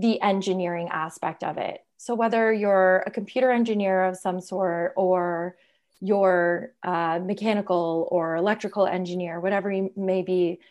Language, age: English, 20-39